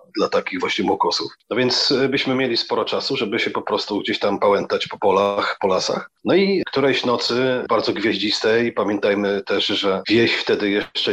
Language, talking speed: Polish, 180 wpm